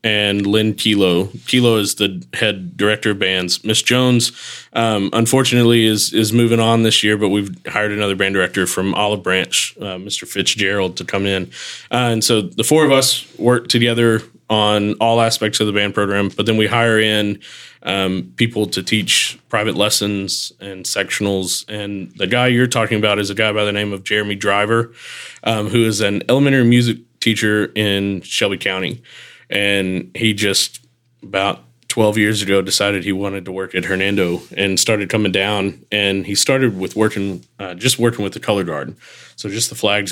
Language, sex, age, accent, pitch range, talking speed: English, male, 20-39, American, 95-115 Hz, 185 wpm